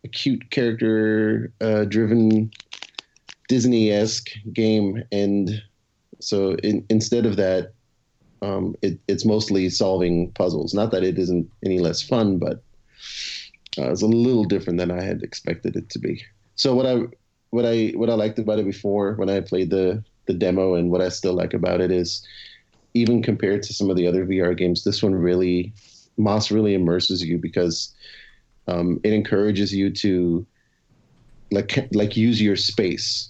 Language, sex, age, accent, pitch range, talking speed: English, male, 30-49, American, 95-110 Hz, 160 wpm